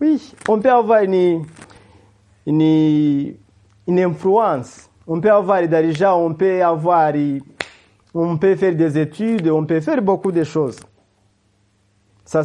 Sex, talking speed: male, 135 wpm